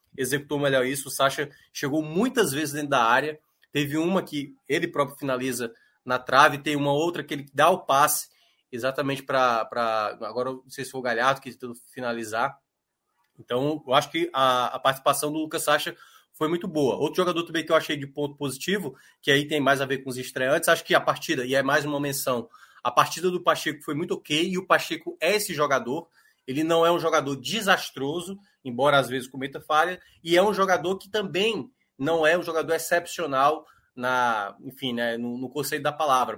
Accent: Brazilian